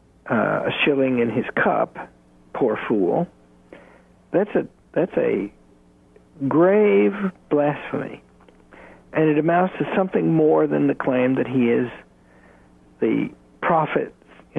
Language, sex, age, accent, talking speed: English, male, 60-79, American, 115 wpm